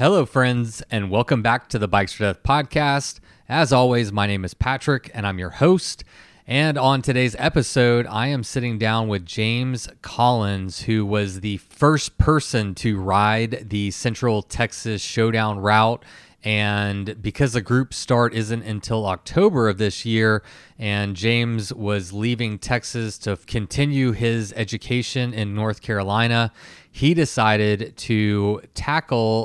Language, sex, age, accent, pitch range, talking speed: English, male, 20-39, American, 105-130 Hz, 145 wpm